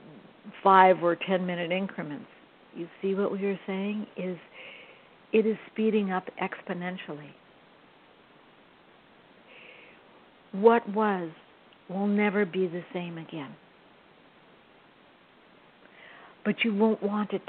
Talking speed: 105 wpm